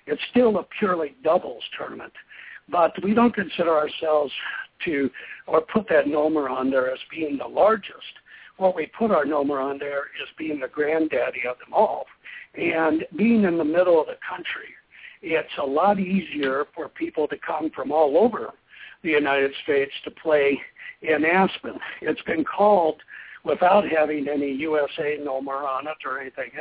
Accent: American